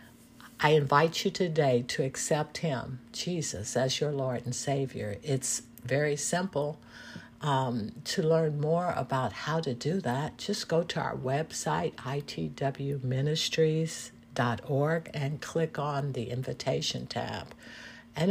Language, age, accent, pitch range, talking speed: English, 60-79, American, 125-165 Hz, 125 wpm